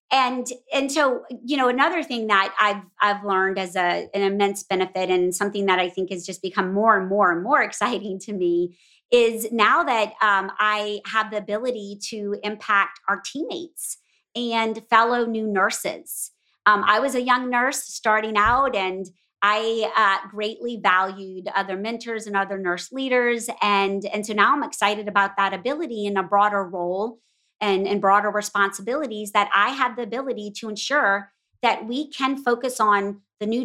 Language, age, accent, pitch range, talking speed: English, 30-49, American, 195-245 Hz, 175 wpm